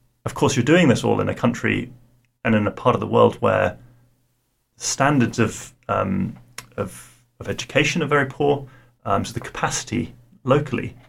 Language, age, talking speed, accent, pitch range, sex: English, 30-49, 170 wpm, British, 110-125 Hz, male